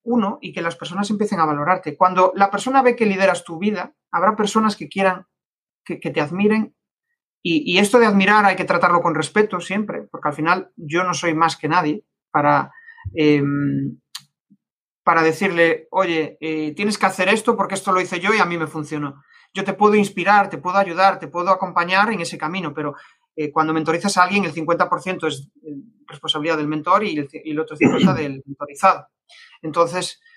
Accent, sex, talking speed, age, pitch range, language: Spanish, male, 190 wpm, 30-49, 160-200 Hz, Spanish